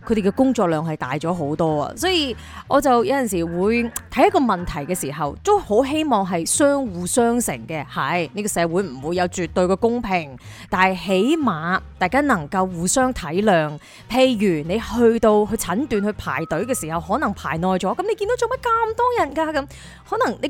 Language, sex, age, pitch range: Chinese, female, 20-39, 185-290 Hz